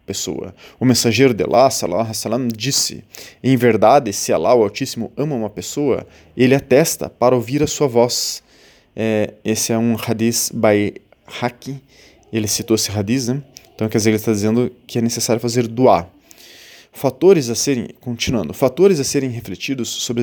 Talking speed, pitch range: 170 wpm, 110-140 Hz